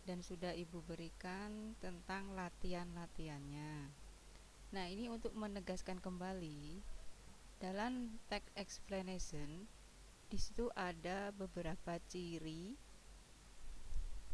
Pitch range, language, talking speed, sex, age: 165-195 Hz, Indonesian, 75 wpm, female, 20-39